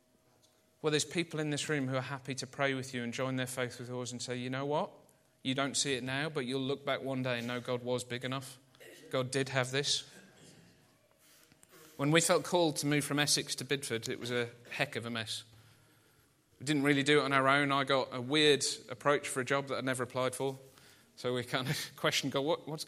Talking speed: 235 wpm